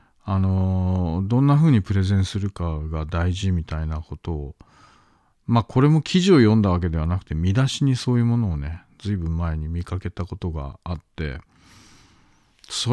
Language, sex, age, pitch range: Japanese, male, 40-59, 85-120 Hz